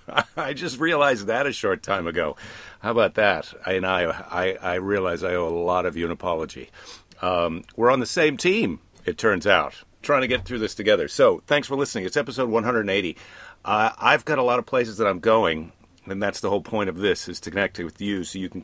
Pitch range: 90-115 Hz